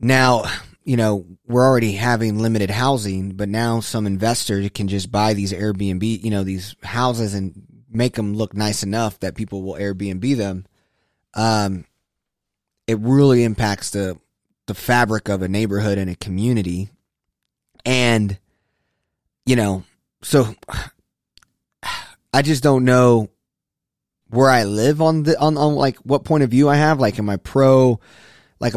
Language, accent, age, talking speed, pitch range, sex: English, American, 20-39, 150 wpm, 100-120 Hz, male